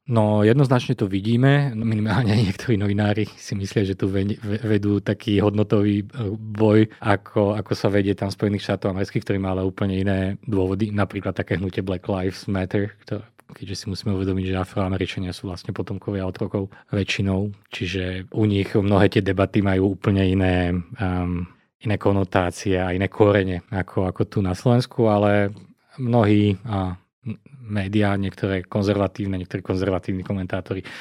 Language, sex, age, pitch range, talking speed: Slovak, male, 20-39, 95-115 Hz, 150 wpm